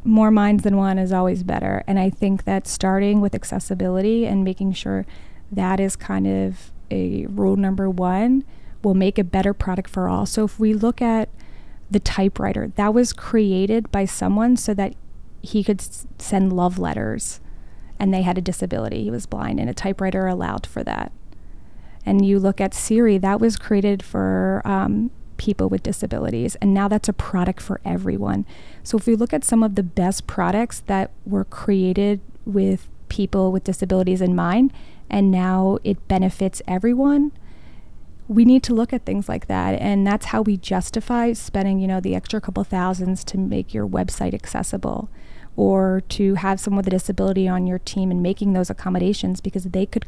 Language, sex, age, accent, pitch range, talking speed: English, female, 30-49, American, 185-205 Hz, 180 wpm